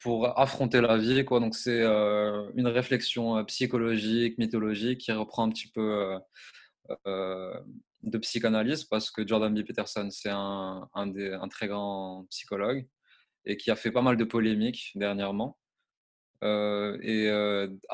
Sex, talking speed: male, 155 wpm